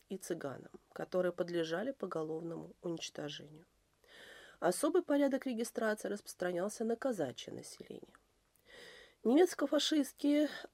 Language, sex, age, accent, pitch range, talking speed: Russian, female, 30-49, native, 185-260 Hz, 80 wpm